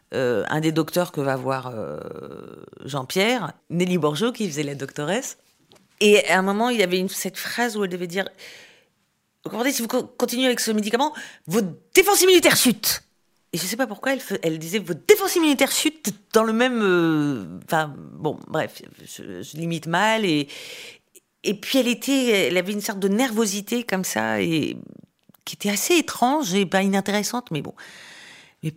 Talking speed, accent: 185 wpm, French